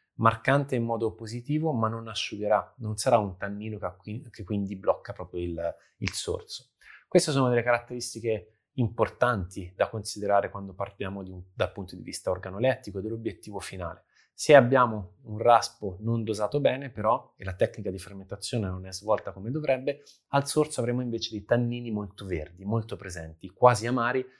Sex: male